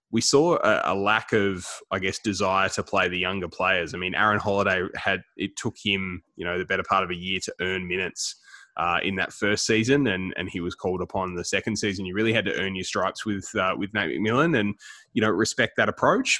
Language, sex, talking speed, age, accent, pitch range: English, male, 240 wpm, 20-39, Australian, 95-105 Hz